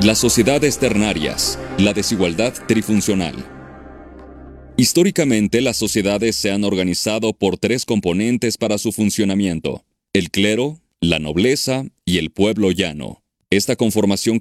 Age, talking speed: 40-59, 115 wpm